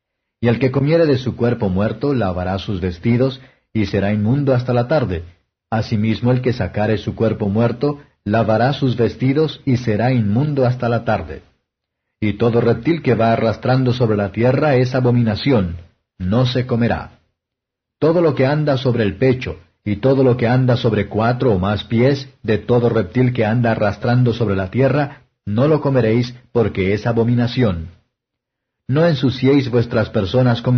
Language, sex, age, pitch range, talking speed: Spanish, male, 50-69, 110-130 Hz, 165 wpm